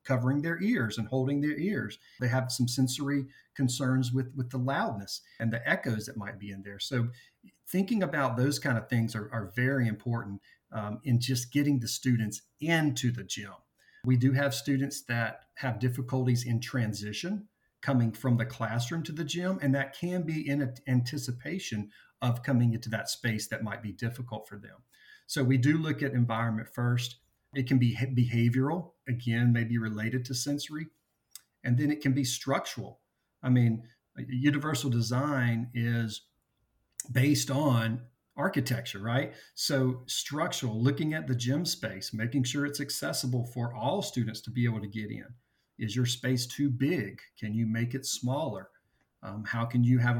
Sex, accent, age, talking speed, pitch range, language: male, American, 40-59, 170 wpm, 115-140 Hz, English